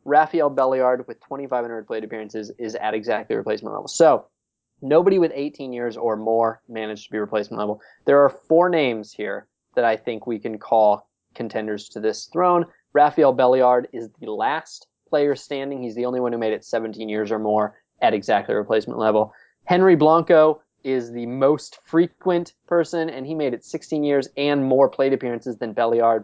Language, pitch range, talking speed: English, 115-150 Hz, 180 wpm